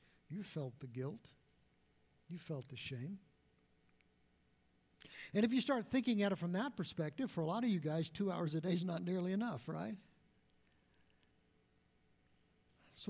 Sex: male